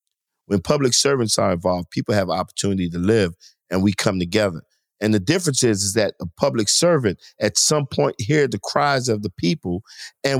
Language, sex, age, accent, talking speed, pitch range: English, male, 50-69, American, 190 wpm, 115-165 Hz